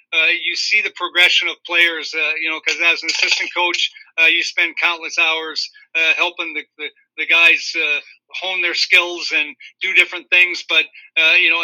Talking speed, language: 195 wpm, English